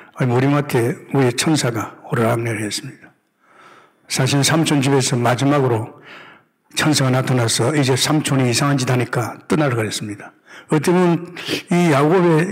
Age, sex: 60-79, male